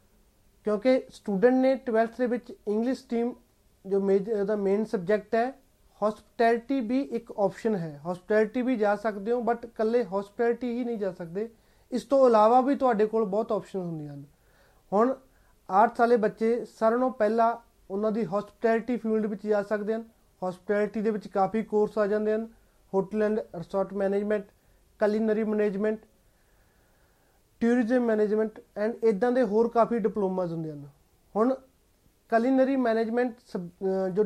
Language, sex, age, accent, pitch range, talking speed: English, male, 30-49, Indian, 205-230 Hz, 110 wpm